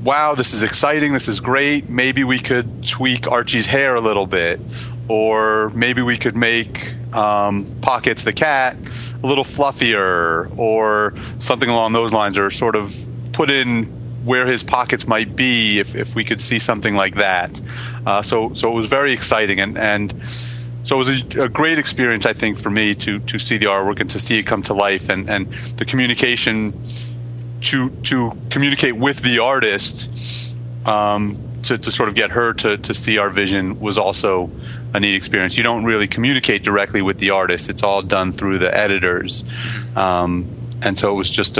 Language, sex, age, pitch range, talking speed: English, male, 30-49, 105-120 Hz, 190 wpm